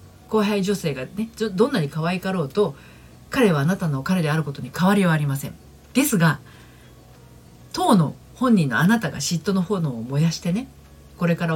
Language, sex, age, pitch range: Japanese, female, 50-69, 140-205 Hz